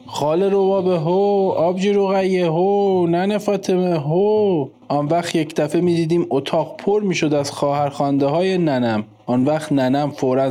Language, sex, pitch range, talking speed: Persian, male, 125-170 Hz, 155 wpm